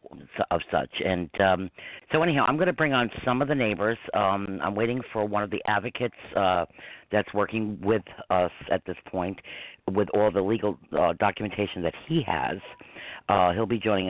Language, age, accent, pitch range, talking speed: English, 50-69, American, 100-115 Hz, 185 wpm